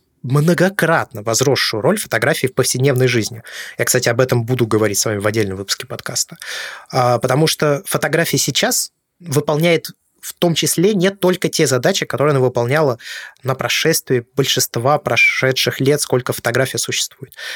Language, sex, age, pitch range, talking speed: Russian, male, 20-39, 120-155 Hz, 145 wpm